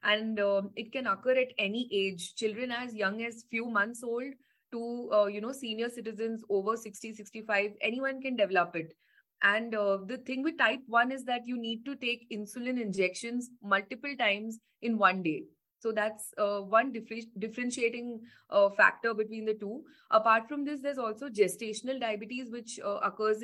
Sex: female